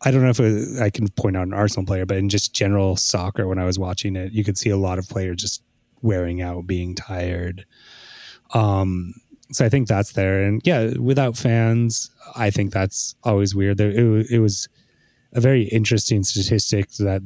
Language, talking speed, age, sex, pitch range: English, 205 wpm, 20-39, male, 95-115 Hz